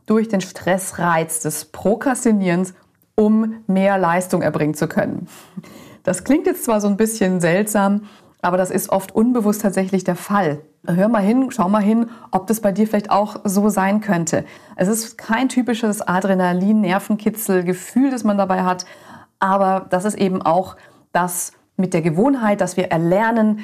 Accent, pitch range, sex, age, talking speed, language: German, 165-205 Hz, female, 30-49, 160 wpm, German